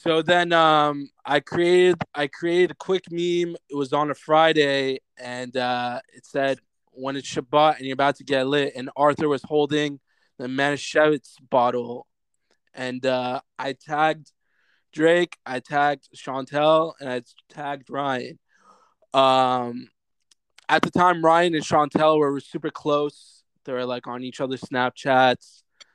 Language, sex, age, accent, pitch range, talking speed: English, male, 20-39, American, 130-160 Hz, 150 wpm